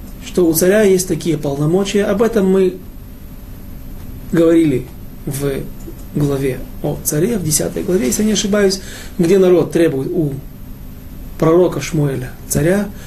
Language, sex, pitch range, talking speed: Russian, male, 140-185 Hz, 130 wpm